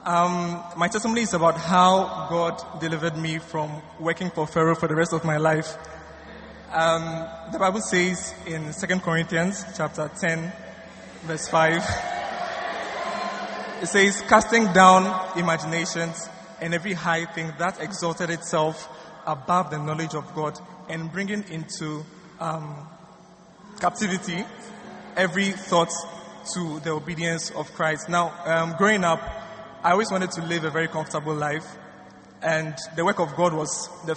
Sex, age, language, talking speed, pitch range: male, 20-39, English, 140 wpm, 160-180 Hz